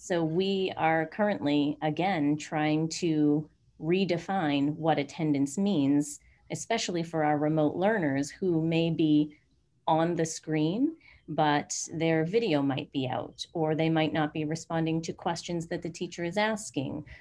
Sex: female